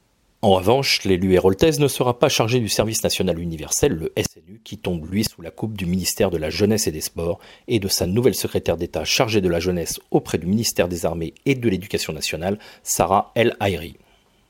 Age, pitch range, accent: 40-59, 90-125 Hz, French